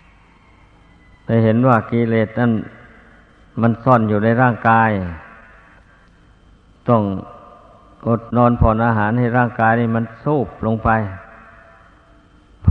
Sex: male